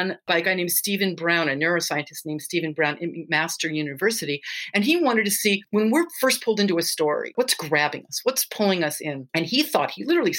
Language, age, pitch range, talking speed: English, 50-69, 160-235 Hz, 220 wpm